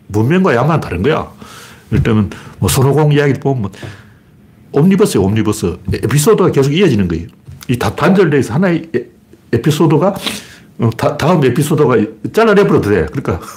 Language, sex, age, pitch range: Korean, male, 60-79, 105-165 Hz